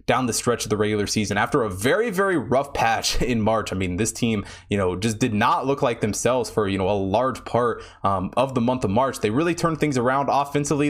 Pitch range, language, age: 110-145 Hz, English, 20-39